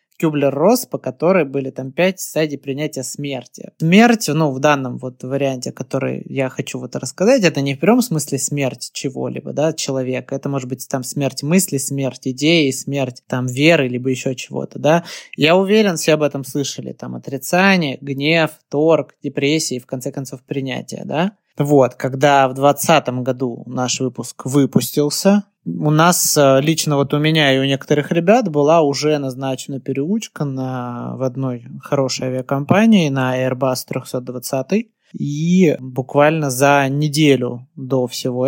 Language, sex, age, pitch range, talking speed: Russian, male, 20-39, 135-165 Hz, 150 wpm